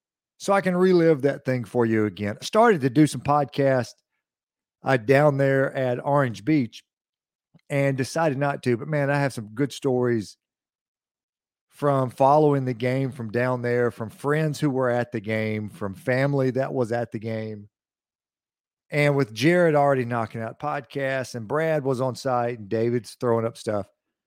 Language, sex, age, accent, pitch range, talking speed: English, male, 50-69, American, 115-145 Hz, 175 wpm